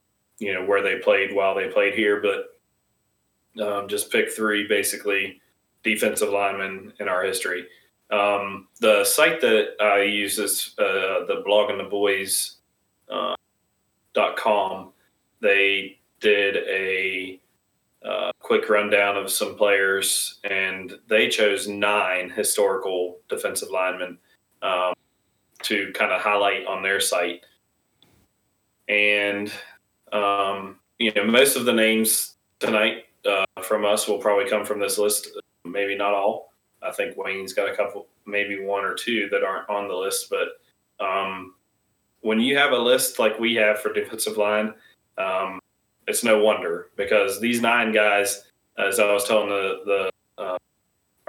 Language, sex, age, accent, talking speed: English, male, 20-39, American, 145 wpm